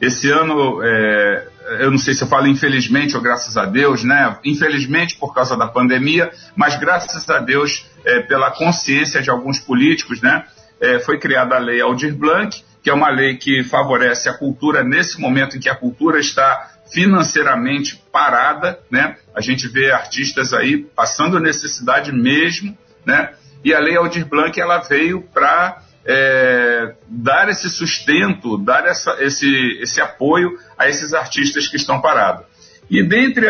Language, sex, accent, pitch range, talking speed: Portuguese, male, Brazilian, 130-170 Hz, 160 wpm